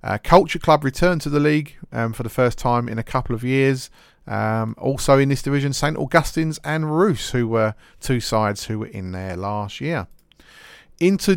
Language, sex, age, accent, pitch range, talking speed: English, male, 30-49, British, 115-145 Hz, 195 wpm